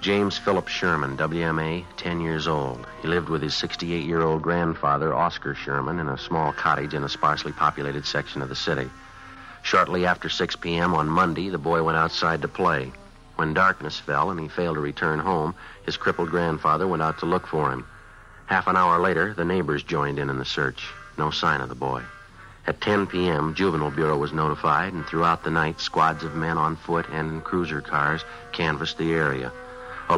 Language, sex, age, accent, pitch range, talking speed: English, male, 60-79, American, 75-90 Hz, 195 wpm